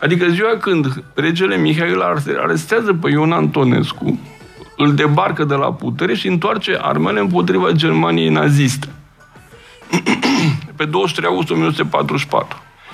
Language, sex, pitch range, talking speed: Romanian, male, 150-225 Hz, 115 wpm